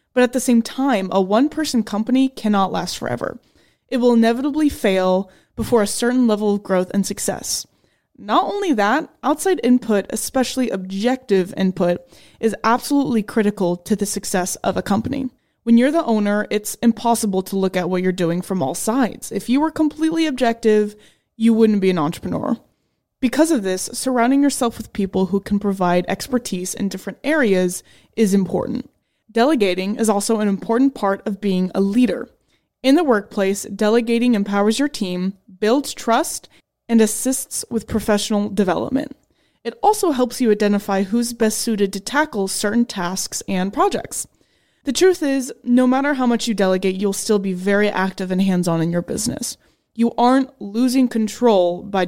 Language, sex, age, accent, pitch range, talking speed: English, female, 20-39, American, 195-250 Hz, 165 wpm